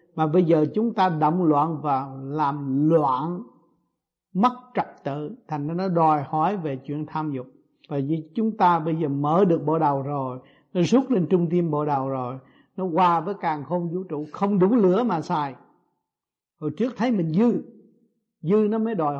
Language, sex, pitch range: Vietnamese, male, 150-200 Hz